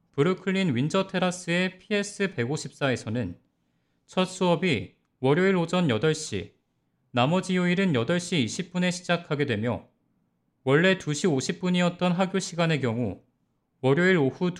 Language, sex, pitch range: Korean, male, 130-185 Hz